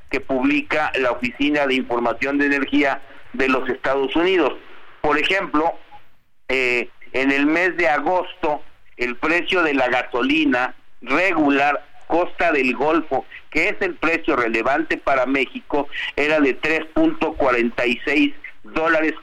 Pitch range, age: 135-165 Hz, 50-69